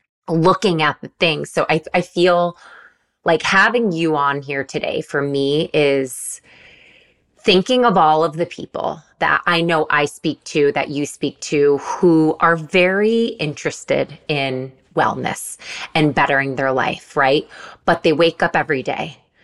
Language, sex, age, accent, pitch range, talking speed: English, female, 20-39, American, 145-175 Hz, 155 wpm